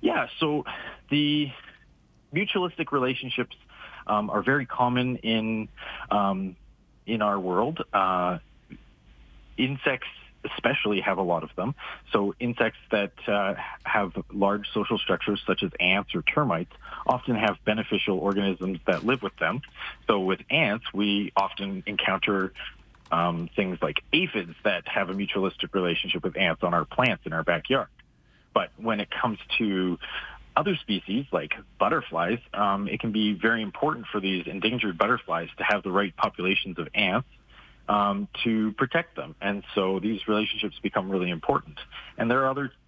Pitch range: 95-115 Hz